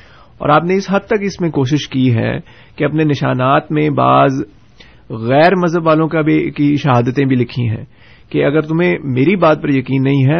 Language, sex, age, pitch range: Urdu, male, 30-49, 120-155 Hz